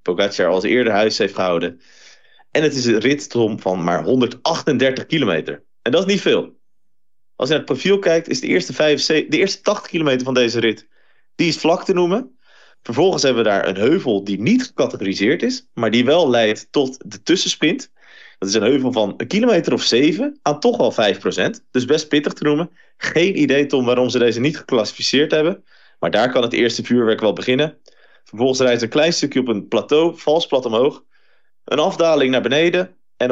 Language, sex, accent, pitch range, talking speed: Dutch, male, Dutch, 115-155 Hz, 200 wpm